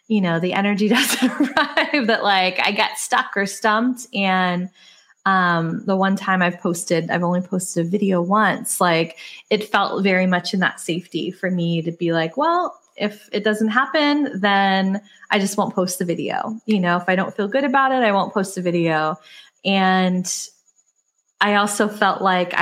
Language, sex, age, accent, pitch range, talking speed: English, female, 20-39, American, 180-220 Hz, 185 wpm